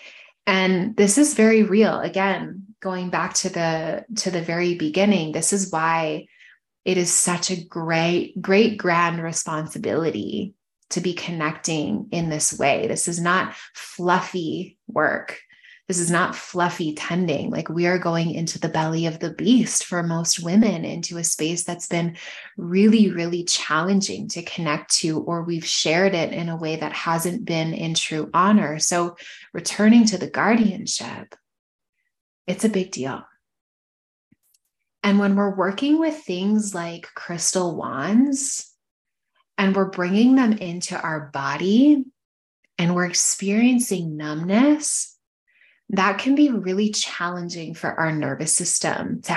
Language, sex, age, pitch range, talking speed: English, female, 20-39, 165-200 Hz, 140 wpm